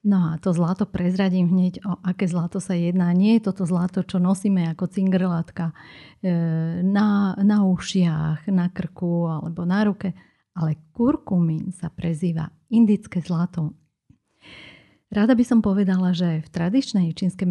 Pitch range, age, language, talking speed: 170-200 Hz, 40-59, Slovak, 140 wpm